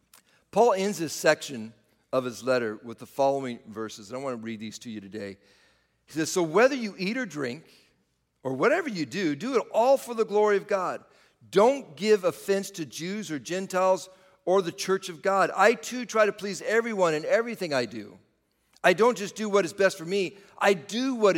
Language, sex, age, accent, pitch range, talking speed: English, male, 50-69, American, 120-190 Hz, 210 wpm